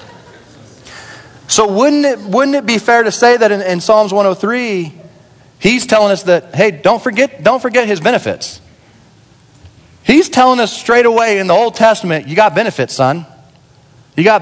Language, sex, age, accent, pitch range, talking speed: English, male, 40-59, American, 125-180 Hz, 165 wpm